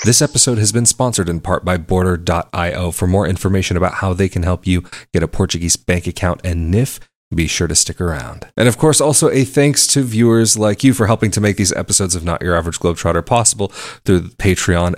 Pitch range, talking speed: 90-110 Hz, 215 wpm